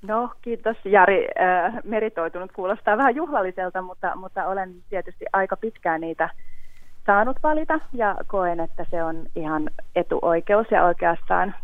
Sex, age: female, 30-49